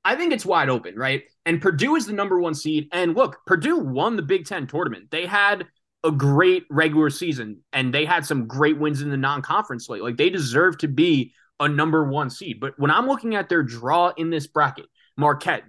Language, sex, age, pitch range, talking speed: English, male, 20-39, 145-175 Hz, 220 wpm